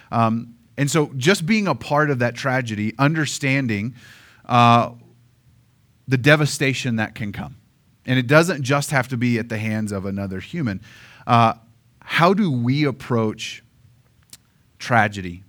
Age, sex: 30-49, male